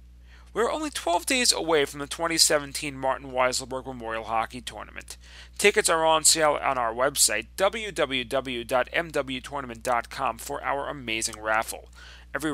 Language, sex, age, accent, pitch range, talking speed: English, male, 40-59, American, 120-175 Hz, 125 wpm